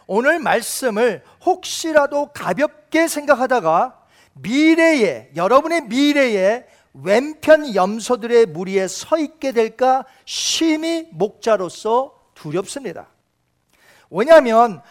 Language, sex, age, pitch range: Korean, male, 40-59, 195-280 Hz